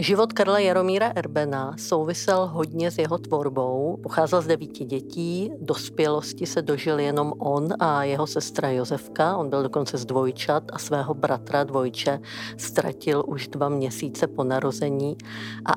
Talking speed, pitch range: 145 wpm, 140-165 Hz